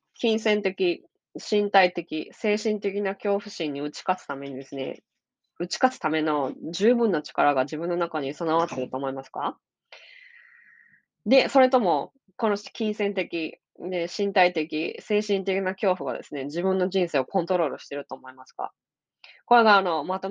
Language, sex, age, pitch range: Japanese, female, 20-39, 150-205 Hz